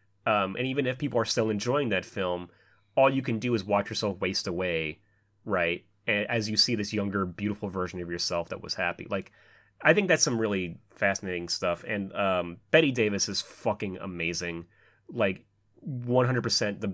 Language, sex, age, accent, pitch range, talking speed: English, male, 30-49, American, 95-115 Hz, 175 wpm